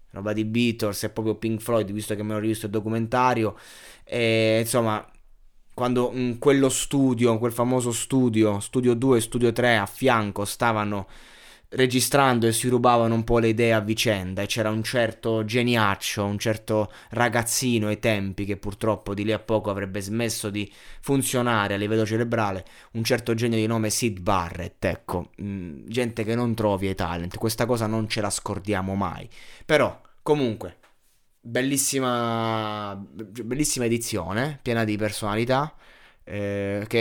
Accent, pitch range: native, 105-120 Hz